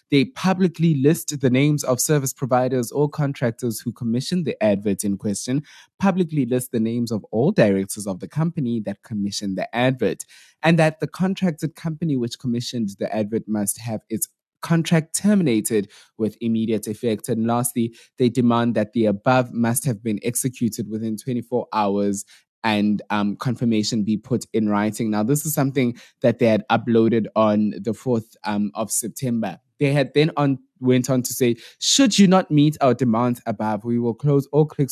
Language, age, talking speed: English, 20-39, 175 wpm